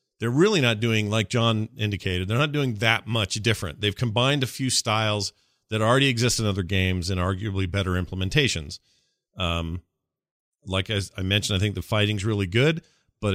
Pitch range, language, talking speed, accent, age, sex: 100-125 Hz, English, 180 wpm, American, 40-59, male